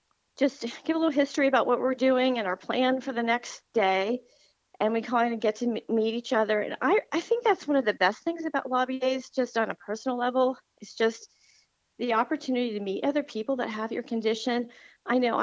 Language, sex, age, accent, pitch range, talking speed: English, female, 40-59, American, 220-280 Hz, 225 wpm